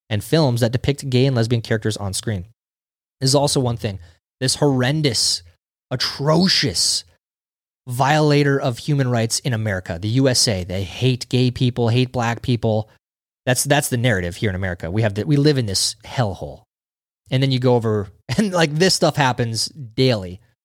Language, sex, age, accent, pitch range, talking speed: English, male, 20-39, American, 105-145 Hz, 170 wpm